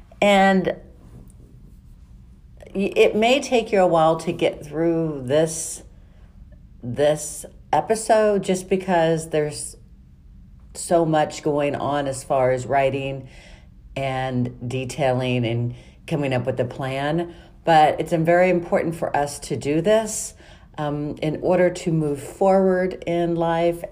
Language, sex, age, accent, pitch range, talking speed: English, female, 50-69, American, 125-175 Hz, 125 wpm